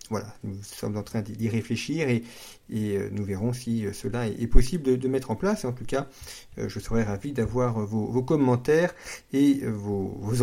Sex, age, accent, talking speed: male, 50-69, French, 190 wpm